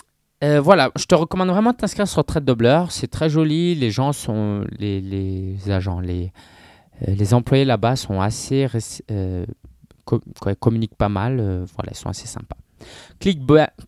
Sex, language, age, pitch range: male, French, 20-39, 100-135 Hz